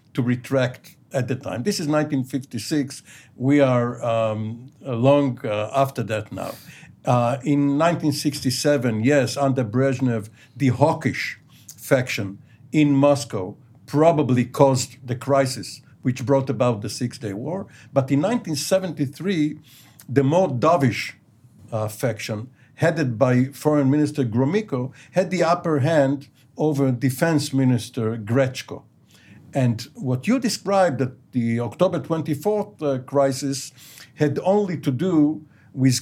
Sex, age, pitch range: male, 60-79, 125-155 Hz